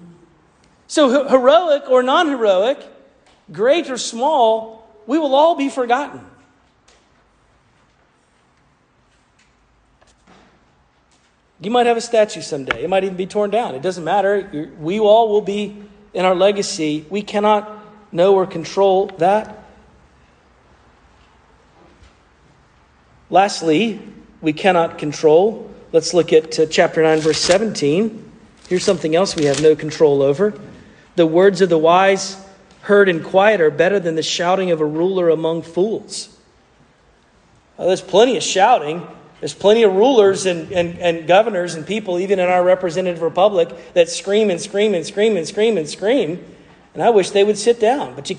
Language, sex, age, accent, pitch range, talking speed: English, male, 50-69, American, 165-220 Hz, 150 wpm